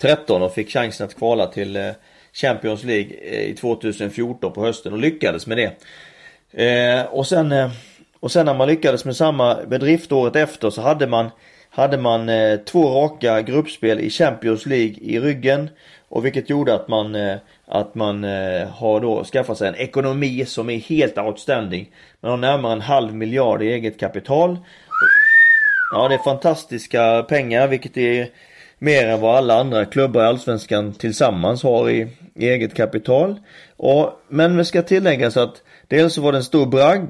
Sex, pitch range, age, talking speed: male, 110-145 Hz, 30-49, 160 wpm